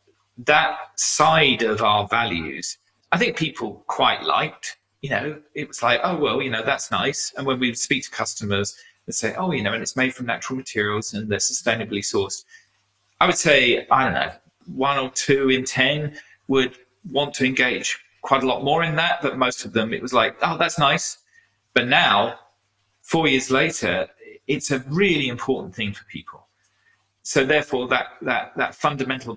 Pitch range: 105-140 Hz